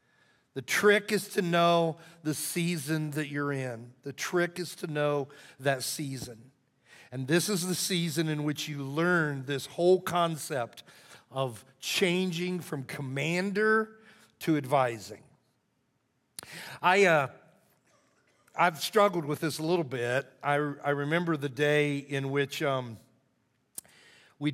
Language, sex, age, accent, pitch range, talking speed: English, male, 50-69, American, 145-165 Hz, 130 wpm